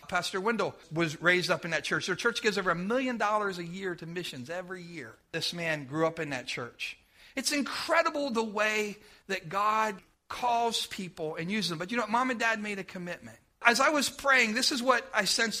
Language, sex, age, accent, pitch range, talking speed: English, male, 50-69, American, 190-255 Hz, 220 wpm